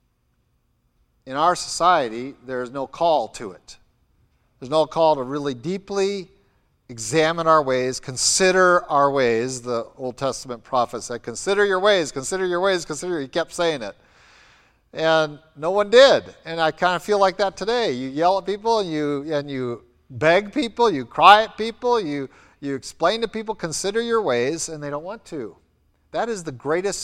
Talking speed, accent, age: 180 wpm, American, 50-69